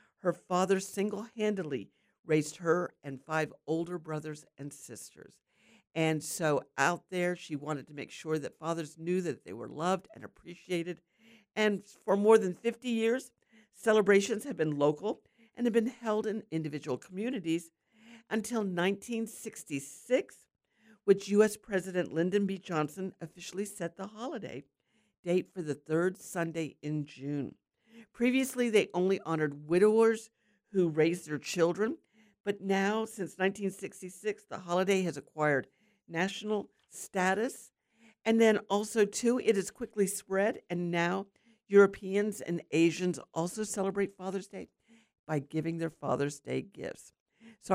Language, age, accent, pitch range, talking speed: English, 50-69, American, 160-215 Hz, 135 wpm